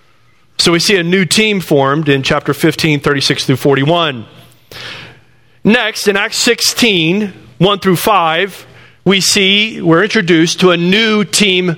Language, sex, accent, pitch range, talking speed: English, male, American, 160-215 Hz, 145 wpm